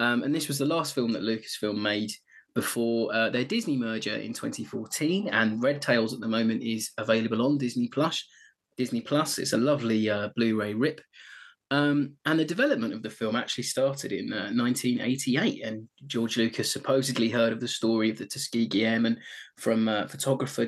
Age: 20-39